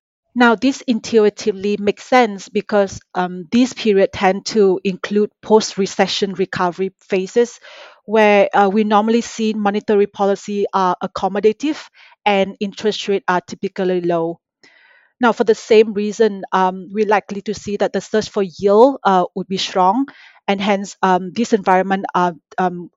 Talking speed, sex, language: 150 wpm, female, English